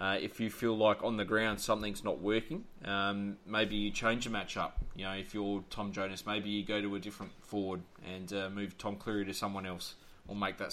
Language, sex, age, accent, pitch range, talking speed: English, male, 20-39, Australian, 100-115 Hz, 235 wpm